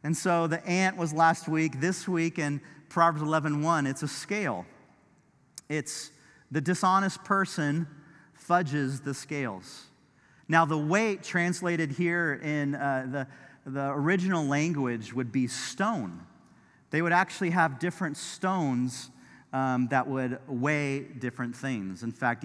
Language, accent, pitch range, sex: English, American, 135-185 Hz, male